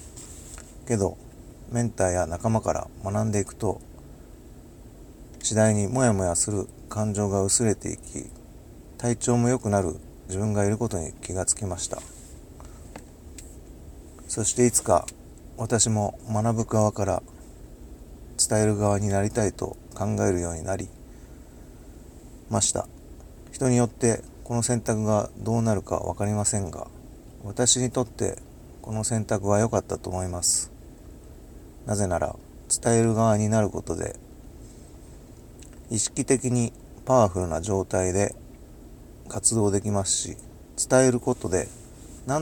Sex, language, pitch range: male, Japanese, 90-115 Hz